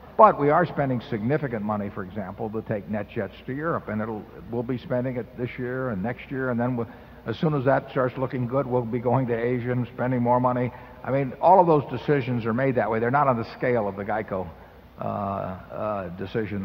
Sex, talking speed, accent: male, 225 wpm, American